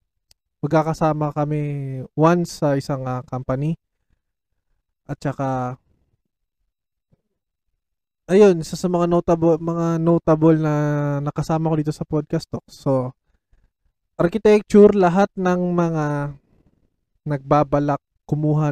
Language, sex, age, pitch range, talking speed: Filipino, male, 20-39, 130-160 Hz, 95 wpm